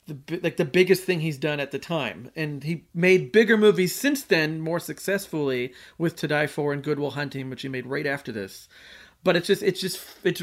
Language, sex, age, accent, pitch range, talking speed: English, male, 40-59, American, 145-175 Hz, 220 wpm